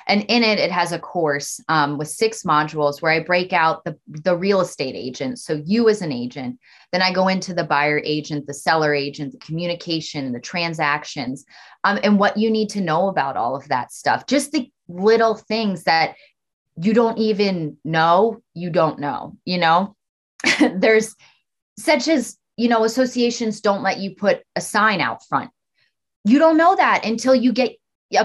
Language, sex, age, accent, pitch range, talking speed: English, female, 20-39, American, 160-215 Hz, 185 wpm